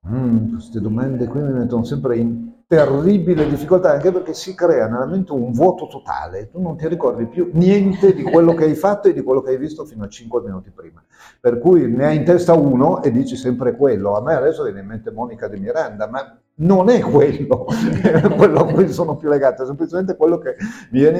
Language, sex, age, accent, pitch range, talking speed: Italian, male, 50-69, native, 120-180 Hz, 220 wpm